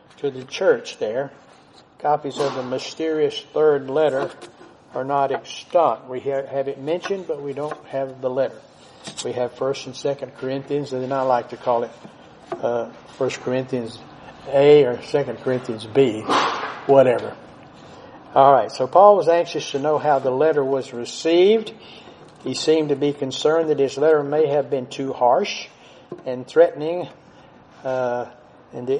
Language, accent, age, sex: English, American, 60-79, male